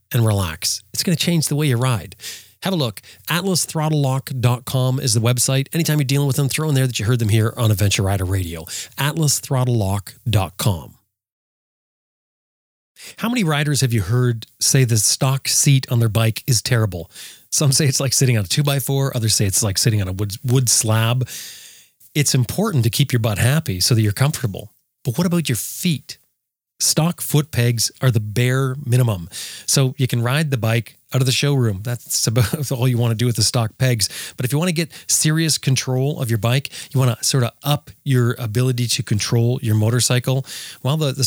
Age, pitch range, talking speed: 30-49, 115-140 Hz, 205 wpm